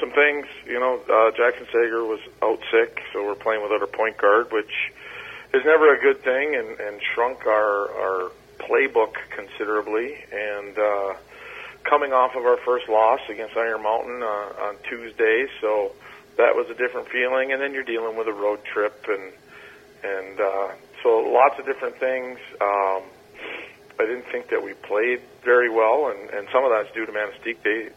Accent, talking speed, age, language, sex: American, 180 wpm, 40-59, English, male